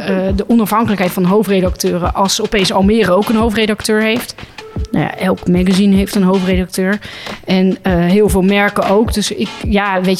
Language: Dutch